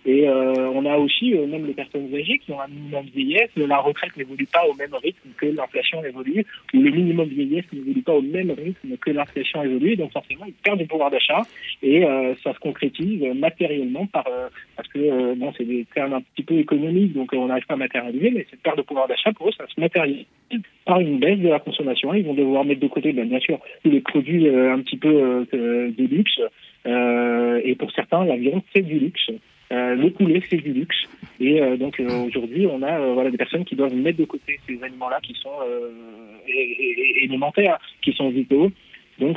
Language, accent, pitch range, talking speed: French, French, 130-200 Hz, 230 wpm